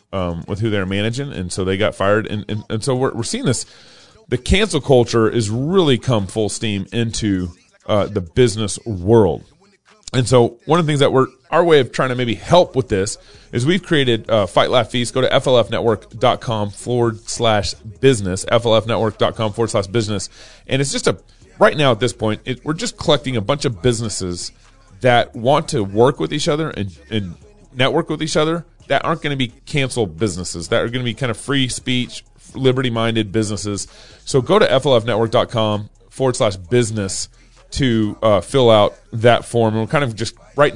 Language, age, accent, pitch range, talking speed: English, 30-49, American, 100-130 Hz, 195 wpm